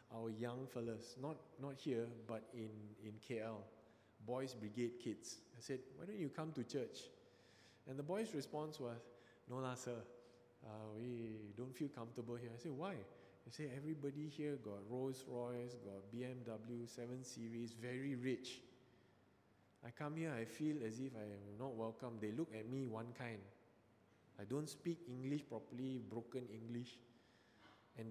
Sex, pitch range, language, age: male, 110-130 Hz, English, 20-39